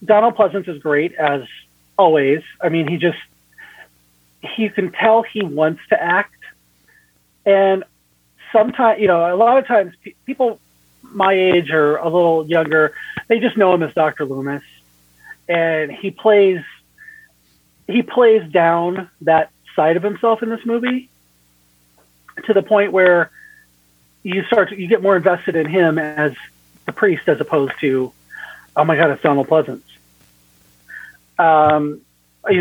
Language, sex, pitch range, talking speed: English, male, 135-195 Hz, 145 wpm